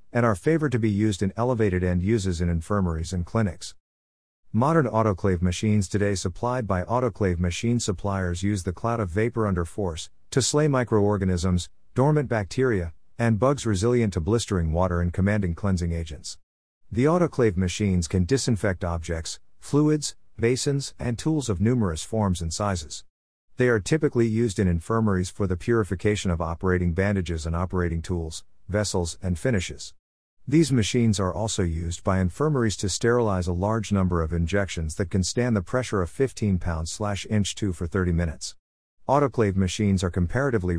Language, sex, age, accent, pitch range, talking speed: English, male, 50-69, American, 90-115 Hz, 160 wpm